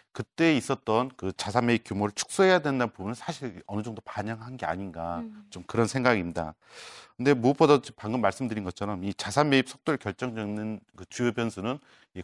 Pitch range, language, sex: 100-130 Hz, Korean, male